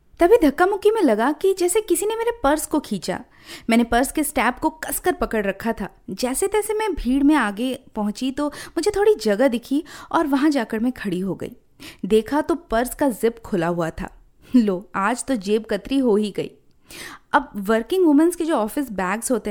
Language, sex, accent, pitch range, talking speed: Hindi, female, native, 225-315 Hz, 200 wpm